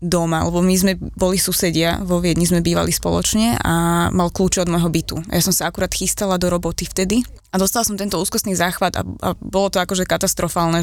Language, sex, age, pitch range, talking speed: Slovak, female, 20-39, 175-195 Hz, 205 wpm